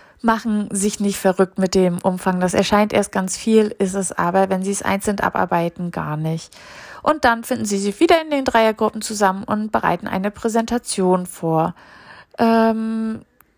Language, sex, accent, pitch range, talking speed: German, female, German, 200-245 Hz, 170 wpm